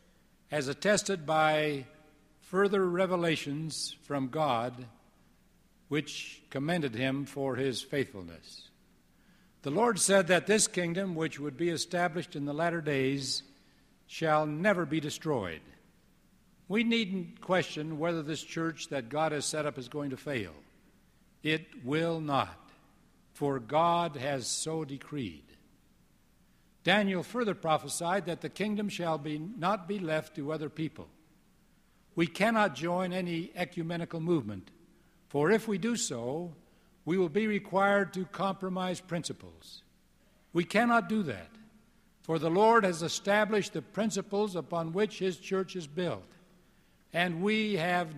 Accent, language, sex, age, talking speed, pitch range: American, English, male, 60-79, 130 wpm, 150-190 Hz